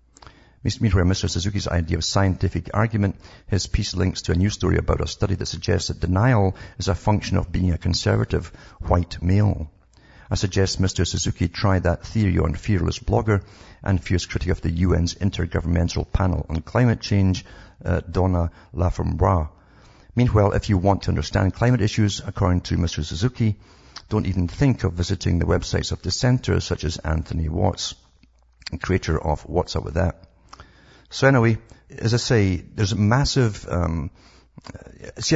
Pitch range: 85-105 Hz